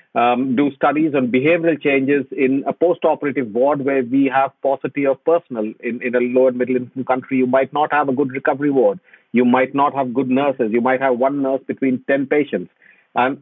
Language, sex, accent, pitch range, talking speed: English, male, Indian, 125-165 Hz, 205 wpm